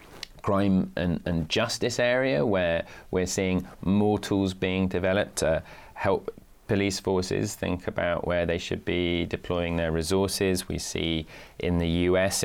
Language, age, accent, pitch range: English, 20-39, British, 85-105 Hz